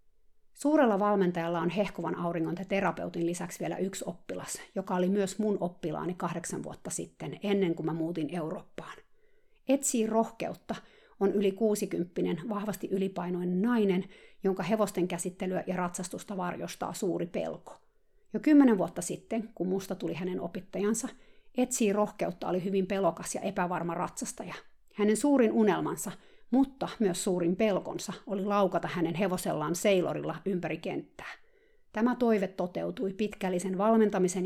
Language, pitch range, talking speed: Finnish, 180-220 Hz, 135 wpm